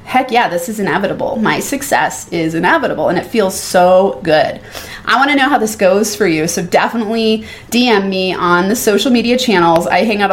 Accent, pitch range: American, 180-225 Hz